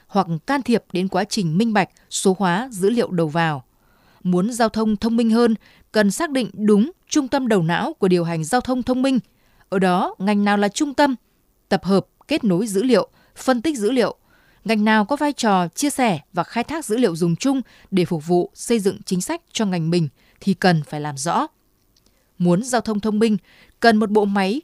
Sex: female